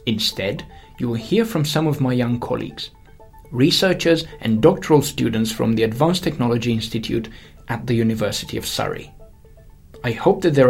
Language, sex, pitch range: English, male, 115-150 Hz